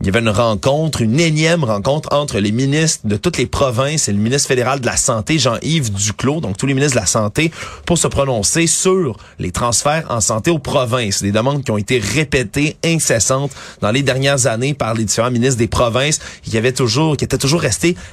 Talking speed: 220 wpm